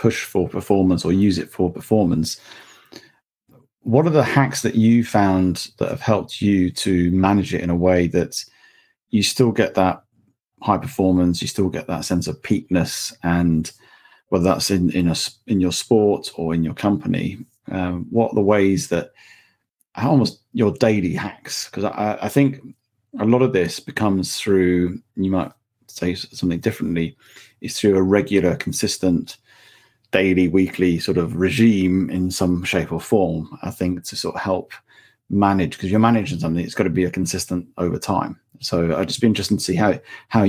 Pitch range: 85-105 Hz